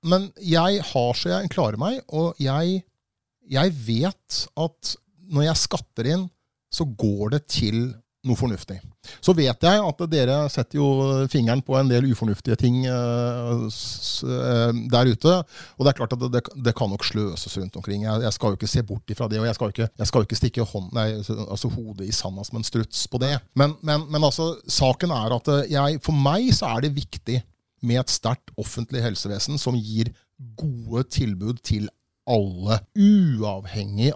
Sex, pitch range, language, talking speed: male, 110-145 Hz, English, 175 wpm